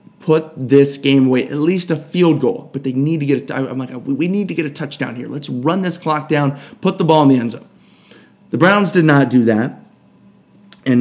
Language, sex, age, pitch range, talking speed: English, male, 30-49, 130-170 Hz, 235 wpm